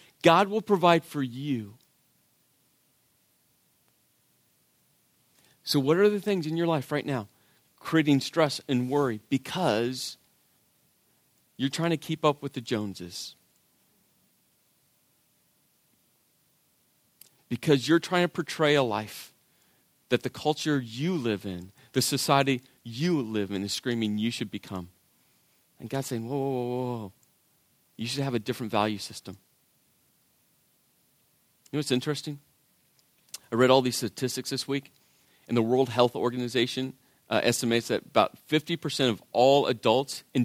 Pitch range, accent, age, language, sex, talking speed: 115-145 Hz, American, 40-59, English, male, 135 wpm